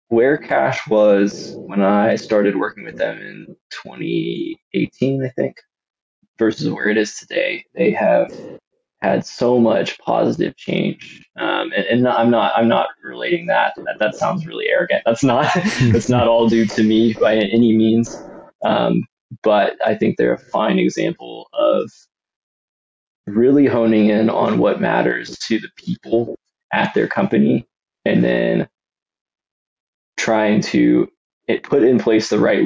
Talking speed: 145 wpm